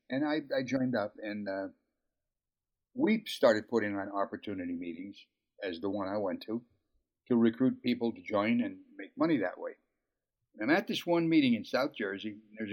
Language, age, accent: English, 60-79, American